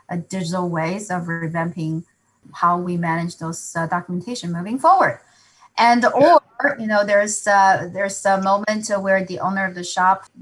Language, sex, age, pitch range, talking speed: English, female, 20-39, 175-215 Hz, 165 wpm